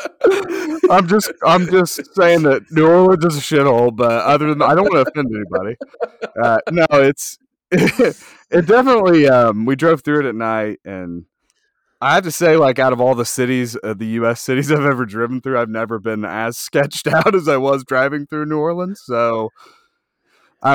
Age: 30-49